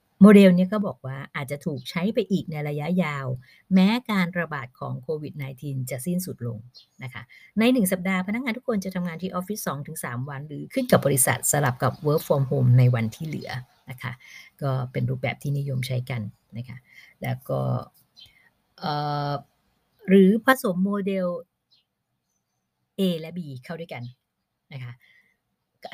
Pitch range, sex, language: 130-180 Hz, female, Thai